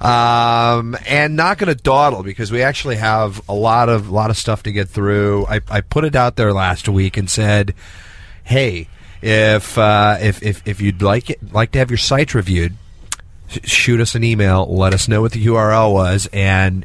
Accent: American